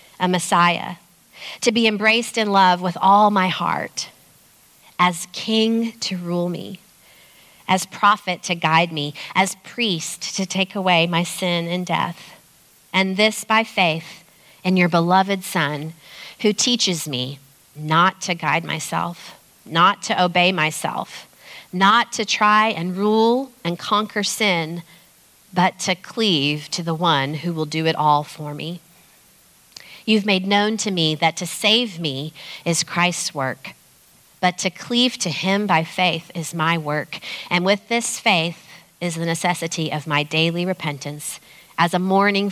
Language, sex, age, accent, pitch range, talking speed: English, female, 40-59, American, 160-195 Hz, 150 wpm